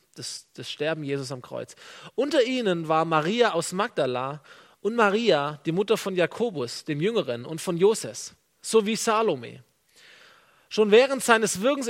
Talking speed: 145 wpm